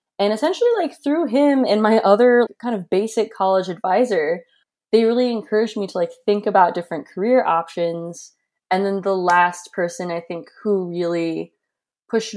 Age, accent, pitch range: 20-39, American, 175-230 Hz